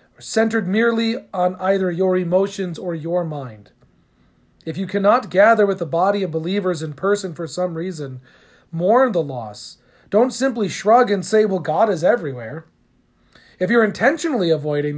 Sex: male